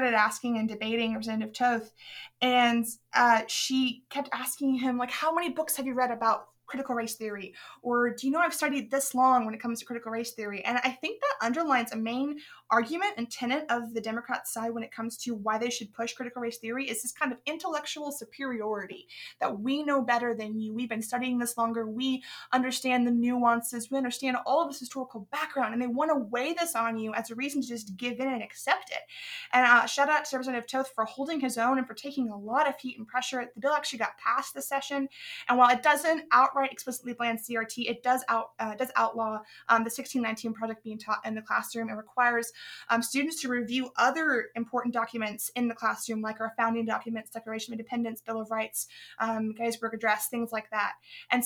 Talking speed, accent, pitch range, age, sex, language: 220 wpm, American, 225-265 Hz, 20-39, female, English